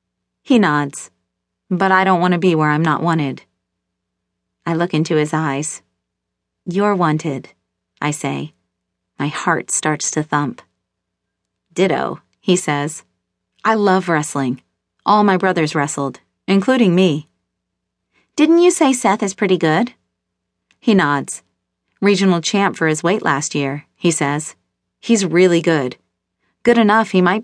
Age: 30-49